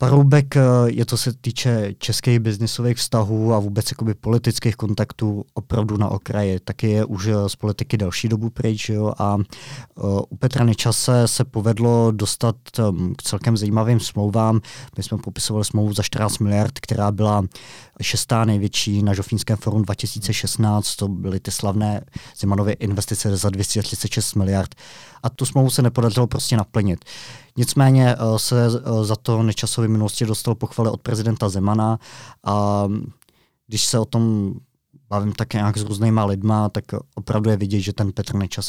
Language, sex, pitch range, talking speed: Czech, male, 100-115 Hz, 145 wpm